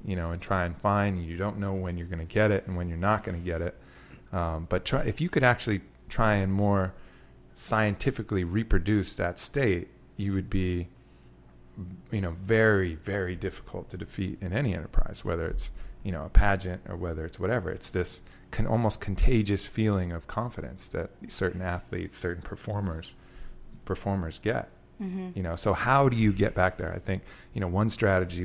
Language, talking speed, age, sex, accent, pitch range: English, 190 wpm, 30-49, male, American, 85-105 Hz